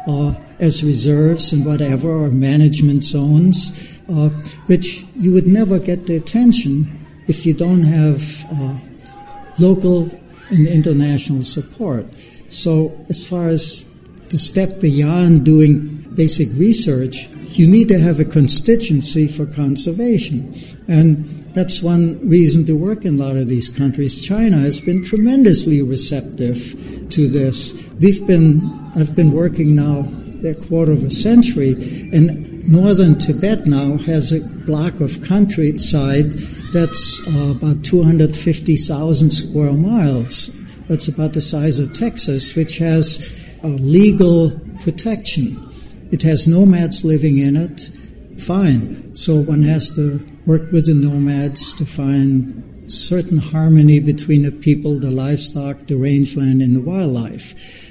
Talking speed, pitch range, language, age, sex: 135 wpm, 145-170 Hz, English, 60-79, male